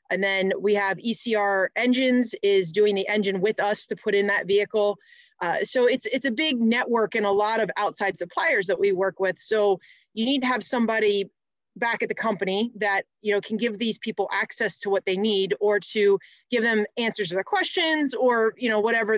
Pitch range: 205-250 Hz